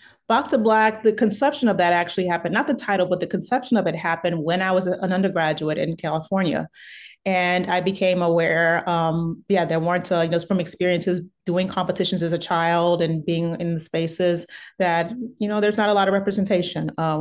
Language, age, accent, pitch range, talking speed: English, 30-49, American, 165-195 Hz, 200 wpm